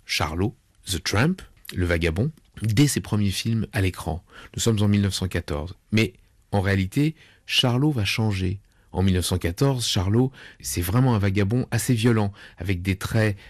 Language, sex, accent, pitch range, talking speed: French, male, French, 95-120 Hz, 145 wpm